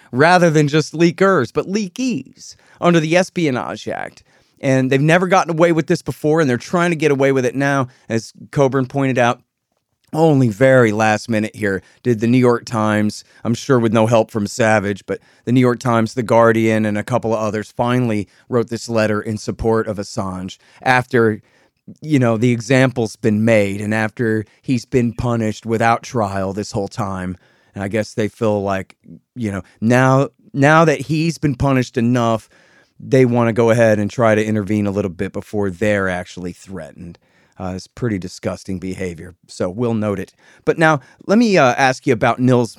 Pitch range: 105-135 Hz